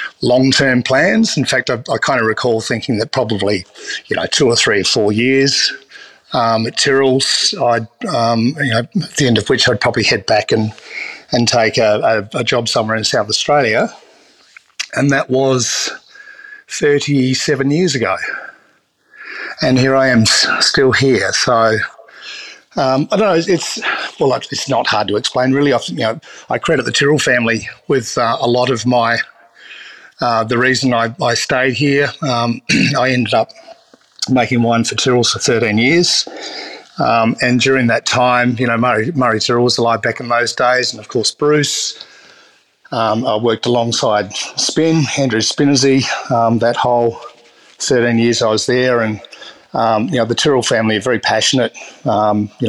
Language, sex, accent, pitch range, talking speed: English, male, Australian, 115-135 Hz, 175 wpm